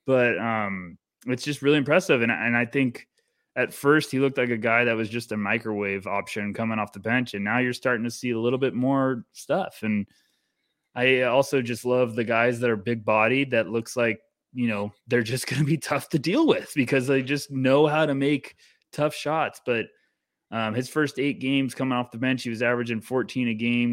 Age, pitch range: 20-39, 115-130 Hz